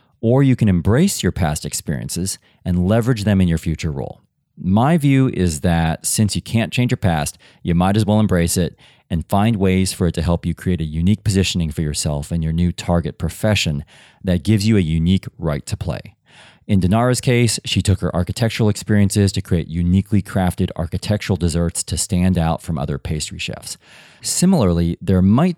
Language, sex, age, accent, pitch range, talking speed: English, male, 30-49, American, 85-110 Hz, 190 wpm